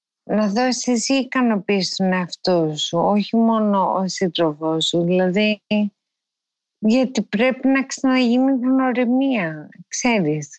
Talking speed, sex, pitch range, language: 110 wpm, female, 185-260 Hz, Greek